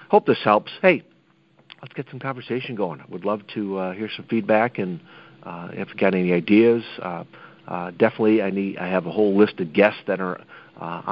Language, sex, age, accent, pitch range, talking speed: English, male, 50-69, American, 90-110 Hz, 210 wpm